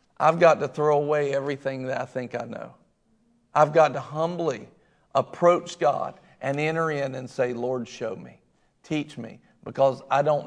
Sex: male